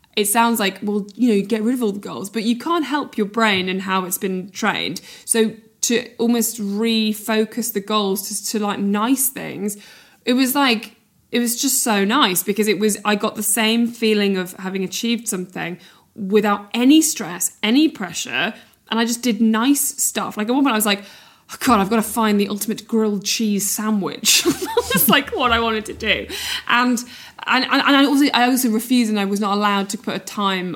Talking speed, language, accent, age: 205 wpm, English, British, 20-39